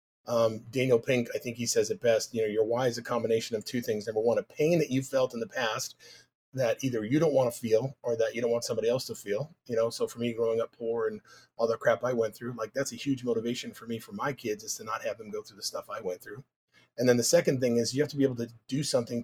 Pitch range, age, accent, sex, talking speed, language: 120-145 Hz, 30-49, American, male, 300 wpm, English